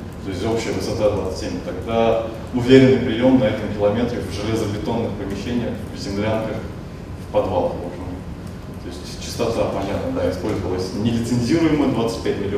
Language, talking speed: Russian, 125 wpm